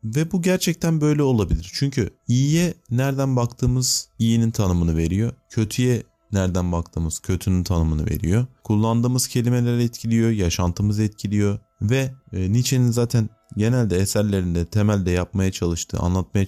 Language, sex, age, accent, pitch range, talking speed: Turkish, male, 30-49, native, 90-120 Hz, 115 wpm